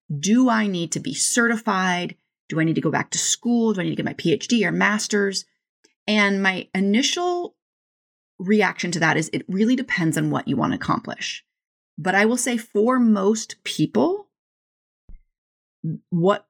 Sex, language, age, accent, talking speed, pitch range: female, English, 30-49, American, 170 wpm, 175-235 Hz